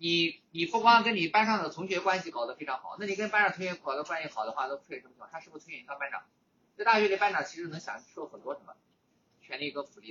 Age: 20-39